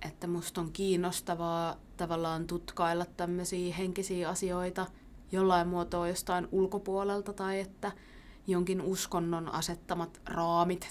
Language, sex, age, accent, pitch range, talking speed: Finnish, female, 20-39, native, 165-180 Hz, 105 wpm